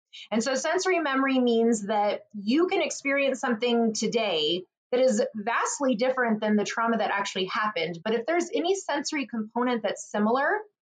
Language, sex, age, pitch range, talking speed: English, female, 20-39, 205-260 Hz, 160 wpm